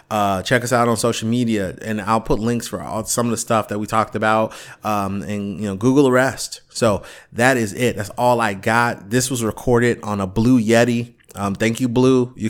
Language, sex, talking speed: English, male, 225 wpm